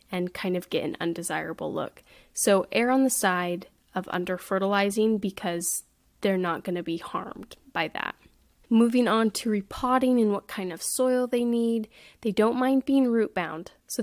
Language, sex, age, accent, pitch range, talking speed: English, female, 10-29, American, 180-225 Hz, 180 wpm